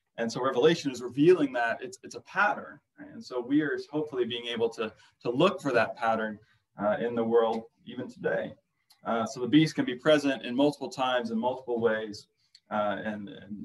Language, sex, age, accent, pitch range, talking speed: English, male, 20-39, American, 120-155 Hz, 200 wpm